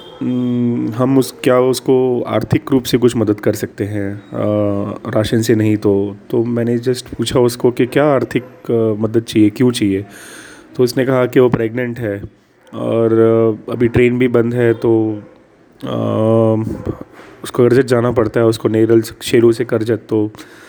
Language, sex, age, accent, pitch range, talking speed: English, male, 30-49, Indian, 110-125 Hz, 160 wpm